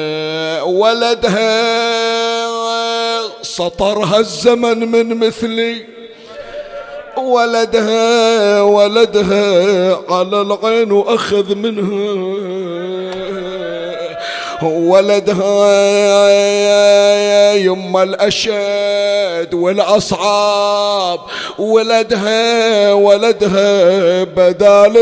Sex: male